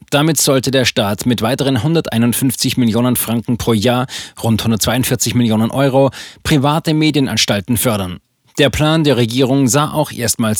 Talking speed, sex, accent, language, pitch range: 140 wpm, male, German, German, 115-145 Hz